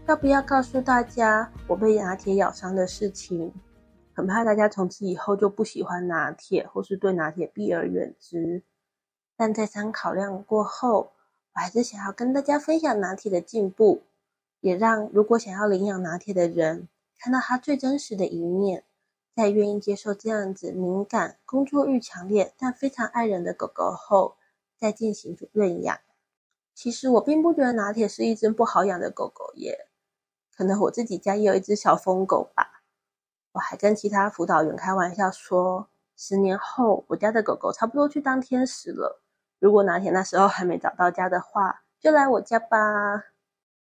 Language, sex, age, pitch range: Chinese, female, 20-39, 185-235 Hz